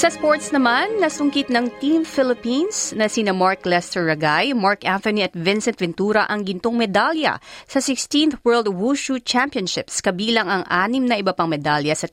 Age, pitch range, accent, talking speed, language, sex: 30-49, 180-250 Hz, native, 165 wpm, Filipino, female